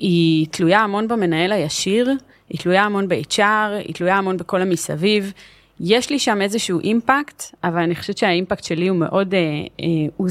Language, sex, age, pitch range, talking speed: Hebrew, female, 30-49, 165-210 Hz, 155 wpm